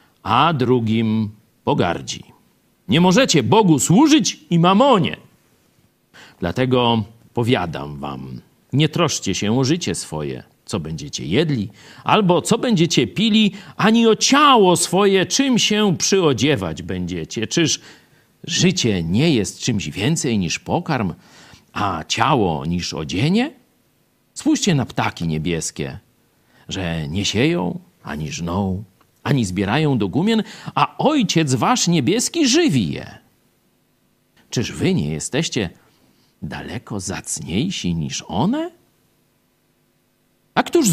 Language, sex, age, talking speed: Polish, male, 50-69, 110 wpm